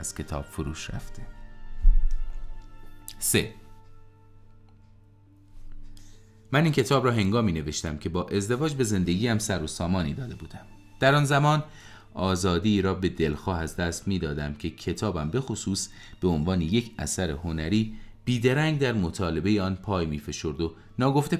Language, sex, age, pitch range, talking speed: Persian, male, 30-49, 90-110 Hz, 135 wpm